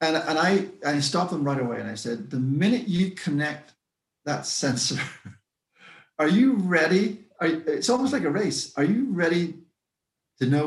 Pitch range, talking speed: 125-170 Hz, 175 wpm